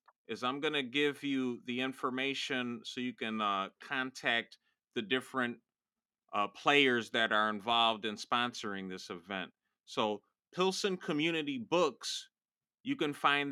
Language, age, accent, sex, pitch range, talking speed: English, 30-49, American, male, 120-150 Hz, 140 wpm